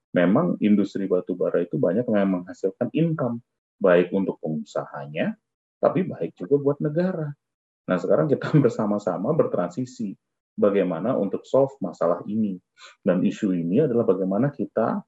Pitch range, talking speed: 95-145 Hz, 130 wpm